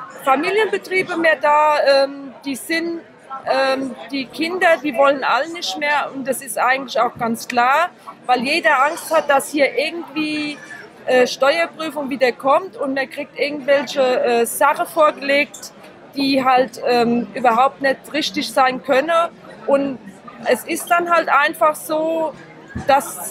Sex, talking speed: female, 140 wpm